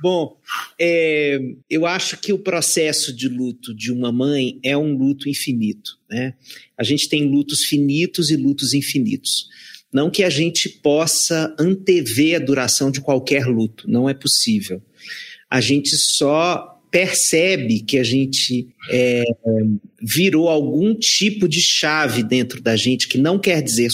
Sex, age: male, 40-59